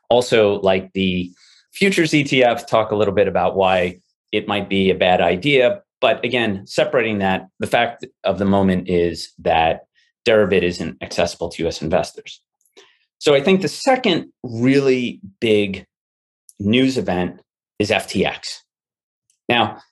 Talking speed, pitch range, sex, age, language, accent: 140 wpm, 95-130 Hz, male, 30-49, English, American